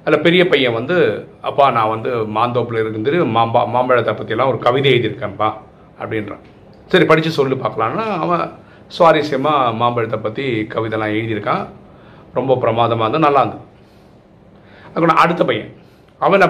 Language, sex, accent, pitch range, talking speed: Tamil, male, native, 120-155 Hz, 125 wpm